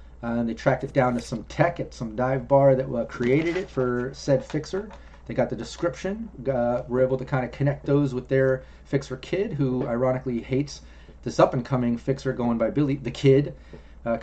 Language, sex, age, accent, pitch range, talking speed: English, male, 30-49, American, 115-135 Hz, 205 wpm